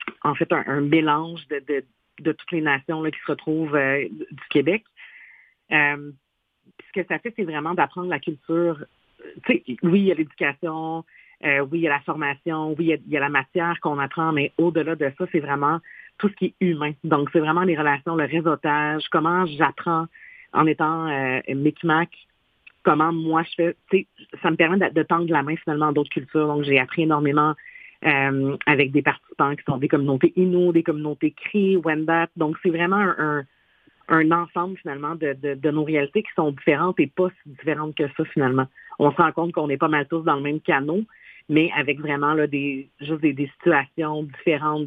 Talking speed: 210 wpm